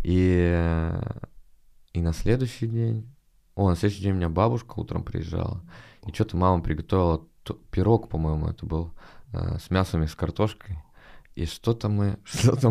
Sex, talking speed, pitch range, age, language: male, 155 wpm, 80-110 Hz, 20-39, Russian